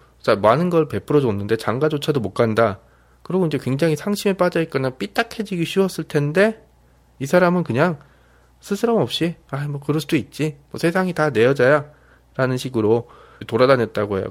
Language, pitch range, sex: Korean, 110-155 Hz, male